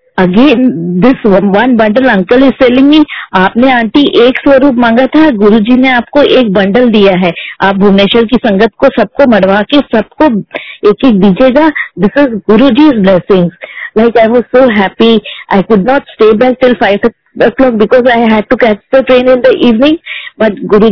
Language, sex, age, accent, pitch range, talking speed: Hindi, female, 20-39, native, 210-255 Hz, 120 wpm